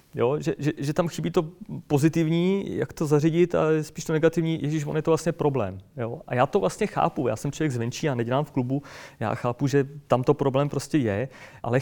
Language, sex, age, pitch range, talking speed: Czech, male, 30-49, 130-155 Hz, 225 wpm